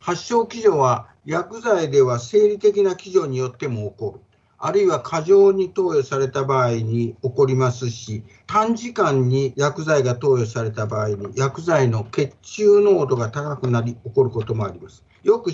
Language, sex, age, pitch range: Japanese, male, 50-69, 120-190 Hz